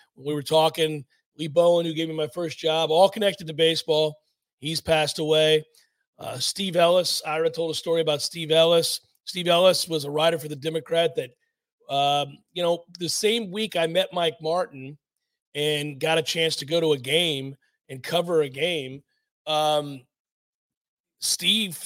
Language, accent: English, American